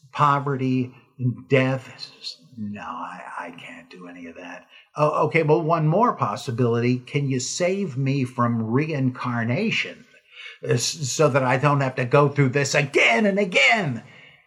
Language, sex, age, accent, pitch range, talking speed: English, male, 50-69, American, 120-150 Hz, 145 wpm